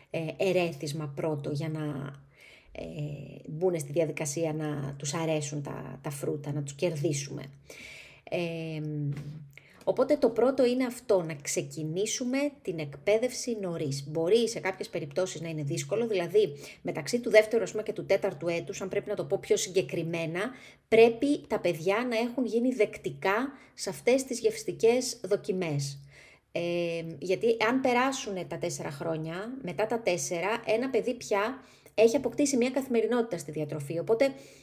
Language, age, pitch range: Greek, 30-49, 160-245 Hz